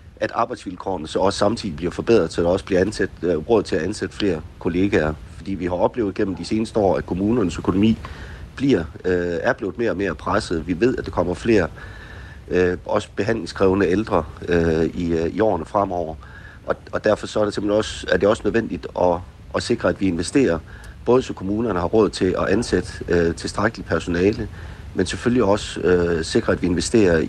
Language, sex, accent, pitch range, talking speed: Danish, male, native, 85-100 Hz, 200 wpm